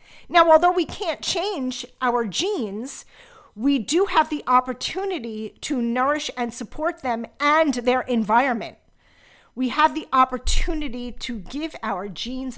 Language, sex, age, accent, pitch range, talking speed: English, female, 40-59, American, 210-270 Hz, 135 wpm